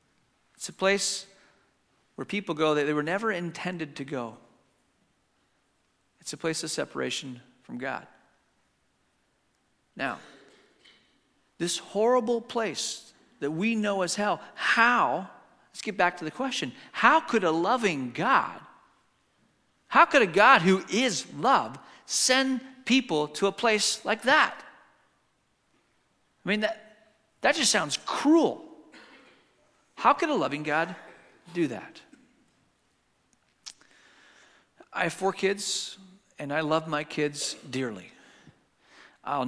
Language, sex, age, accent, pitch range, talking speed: English, male, 40-59, American, 130-195 Hz, 120 wpm